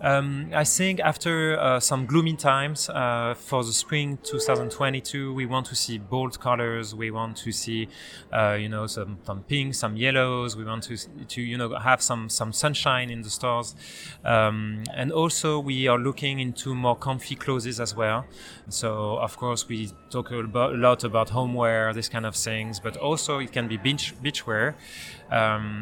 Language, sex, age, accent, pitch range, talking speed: French, male, 30-49, French, 110-130 Hz, 180 wpm